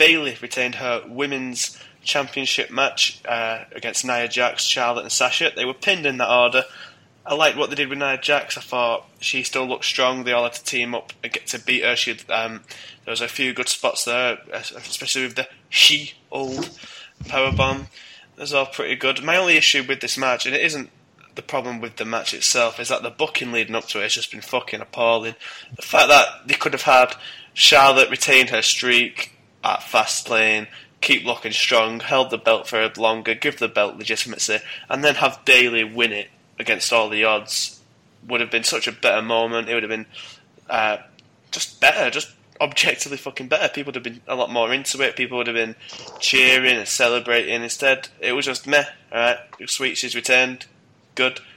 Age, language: 20-39, English